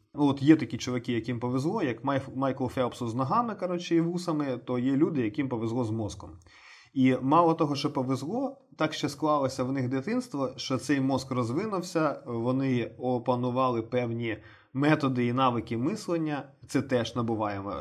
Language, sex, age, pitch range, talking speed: Ukrainian, male, 20-39, 115-140 Hz, 160 wpm